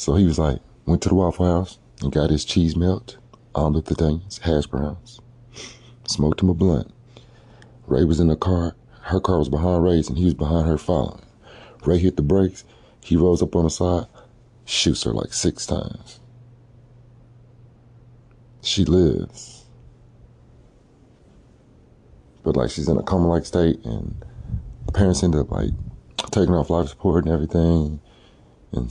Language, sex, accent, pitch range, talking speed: English, male, American, 85-120 Hz, 160 wpm